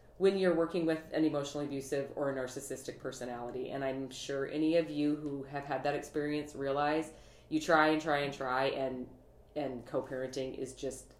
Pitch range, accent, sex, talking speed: 135-160 Hz, American, female, 180 wpm